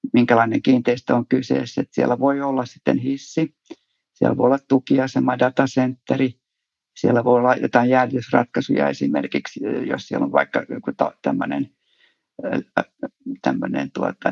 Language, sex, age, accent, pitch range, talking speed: Finnish, male, 50-69, native, 120-145 Hz, 115 wpm